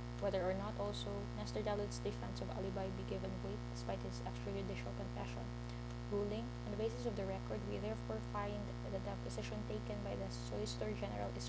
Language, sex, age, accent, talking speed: English, female, 20-39, Filipino, 185 wpm